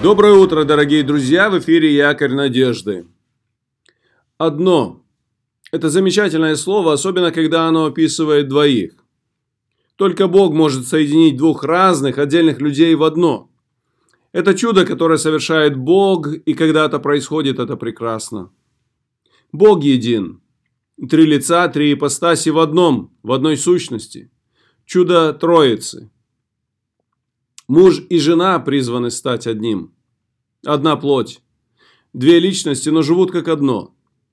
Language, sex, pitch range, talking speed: Russian, male, 130-170 Hz, 110 wpm